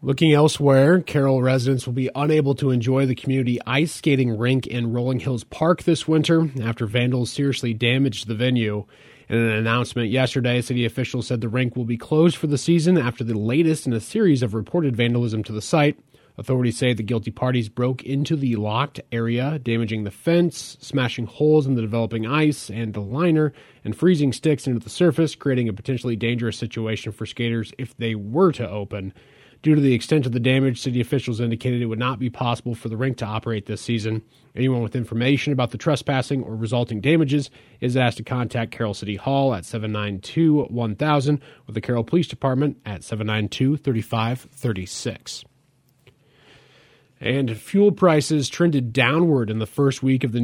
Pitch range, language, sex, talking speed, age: 115-140 Hz, English, male, 180 wpm, 30-49